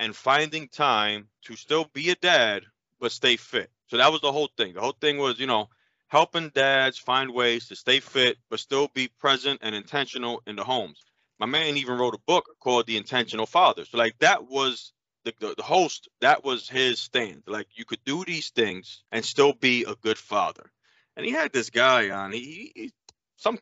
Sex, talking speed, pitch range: male, 210 wpm, 115-145 Hz